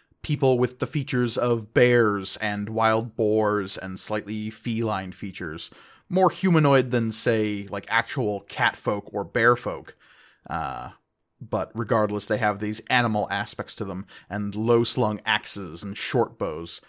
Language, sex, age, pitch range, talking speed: English, male, 30-49, 105-120 Hz, 145 wpm